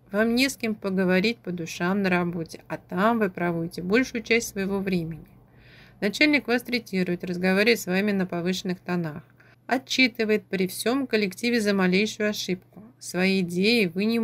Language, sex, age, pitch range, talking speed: Russian, female, 30-49, 175-220 Hz, 155 wpm